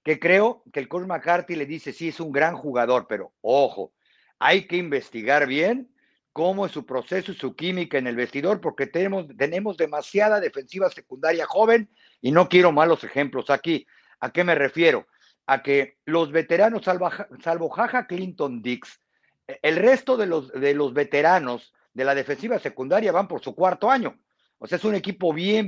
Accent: Mexican